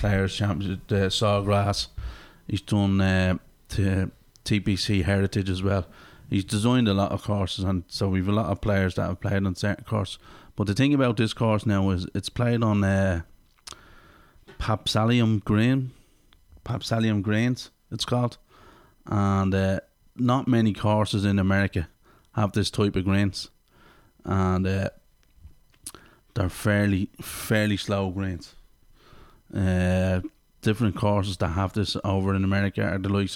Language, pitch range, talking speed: English, 95-110 Hz, 145 wpm